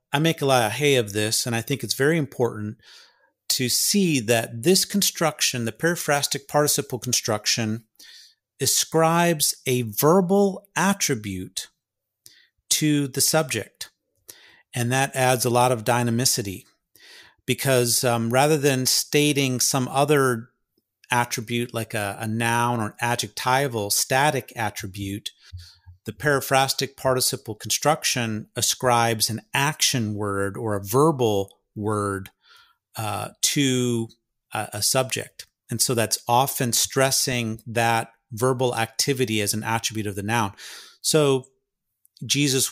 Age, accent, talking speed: 40-59, American, 120 wpm